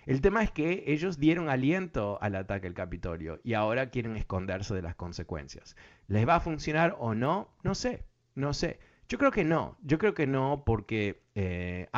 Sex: male